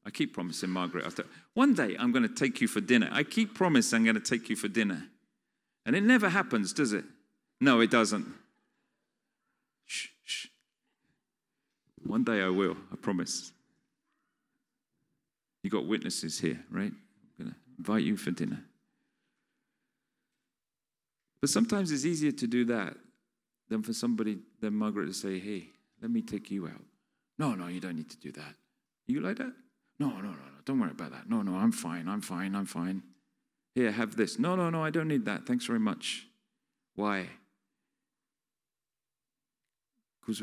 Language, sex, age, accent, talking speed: English, male, 40-59, British, 170 wpm